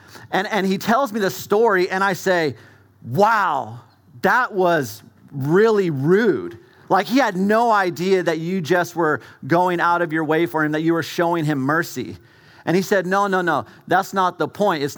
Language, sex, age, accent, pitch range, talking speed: English, male, 40-59, American, 140-185 Hz, 190 wpm